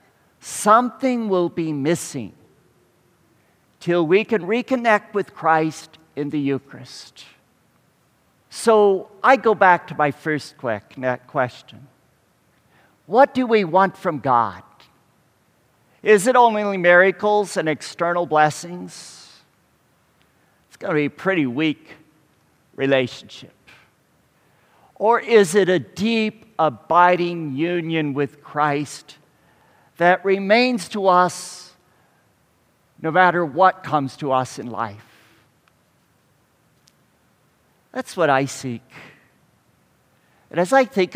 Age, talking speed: 50-69, 105 wpm